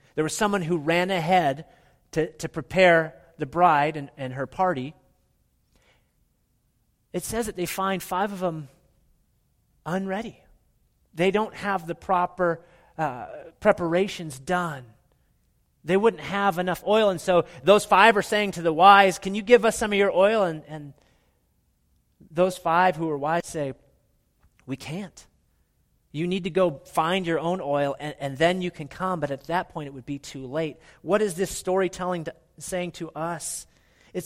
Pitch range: 155-210 Hz